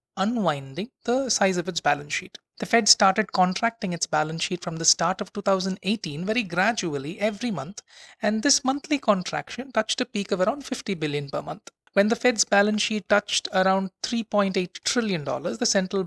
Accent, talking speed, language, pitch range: Indian, 180 wpm, English, 180-230 Hz